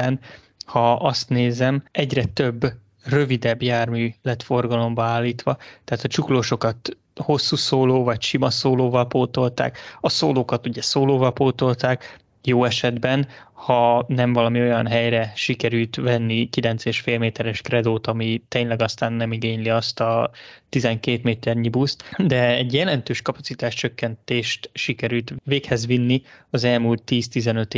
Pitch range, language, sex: 115-135 Hz, Hungarian, male